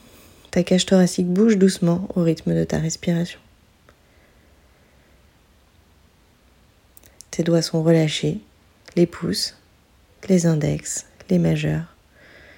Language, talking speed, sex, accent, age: French, 95 wpm, female, French, 30-49